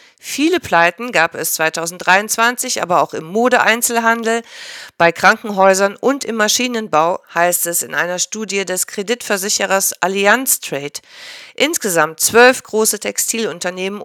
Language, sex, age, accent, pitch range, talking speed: German, female, 50-69, German, 175-225 Hz, 115 wpm